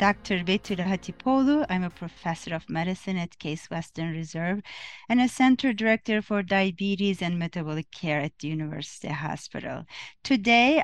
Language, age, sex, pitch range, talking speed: English, 30-49, female, 170-215 Hz, 140 wpm